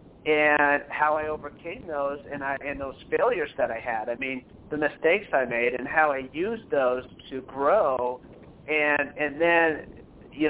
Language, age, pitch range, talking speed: English, 50-69, 135-170 Hz, 170 wpm